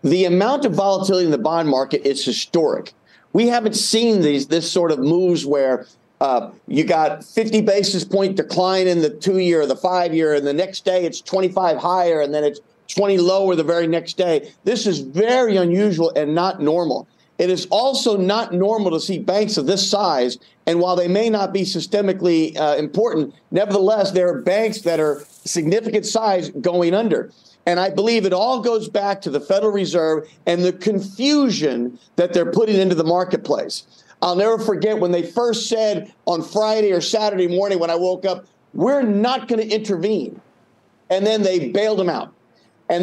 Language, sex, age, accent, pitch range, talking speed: English, male, 50-69, American, 170-215 Hz, 185 wpm